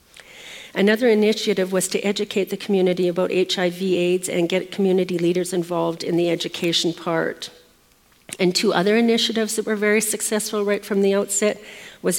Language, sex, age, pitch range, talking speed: English, female, 50-69, 175-200 Hz, 160 wpm